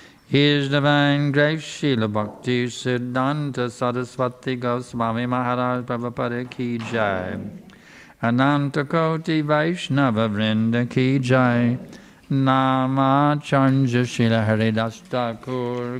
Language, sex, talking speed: English, male, 80 wpm